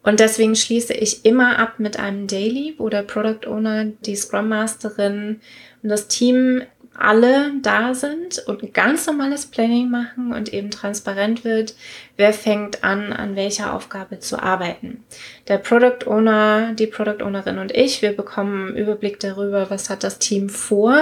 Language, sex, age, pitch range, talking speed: German, female, 20-39, 200-235 Hz, 165 wpm